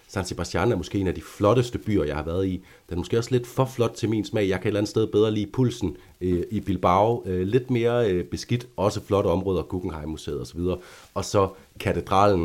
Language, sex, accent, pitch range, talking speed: Danish, male, native, 85-105 Hz, 235 wpm